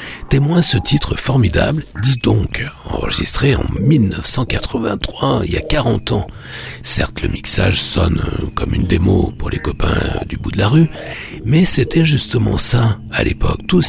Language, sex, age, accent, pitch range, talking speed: French, male, 60-79, French, 85-135 Hz, 155 wpm